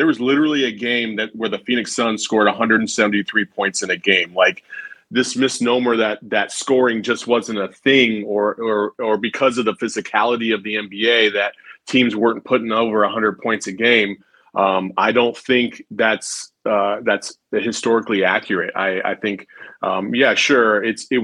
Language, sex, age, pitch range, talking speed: English, male, 30-49, 100-120 Hz, 175 wpm